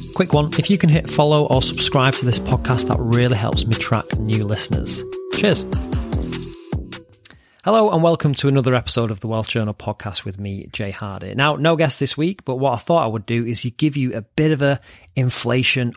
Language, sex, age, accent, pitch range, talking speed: English, male, 30-49, British, 105-140 Hz, 205 wpm